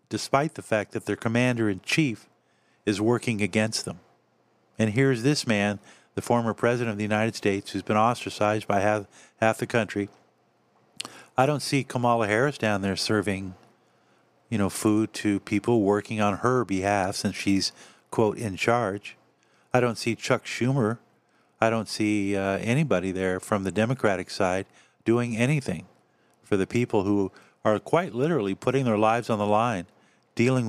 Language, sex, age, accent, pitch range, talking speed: English, male, 50-69, American, 100-120 Hz, 160 wpm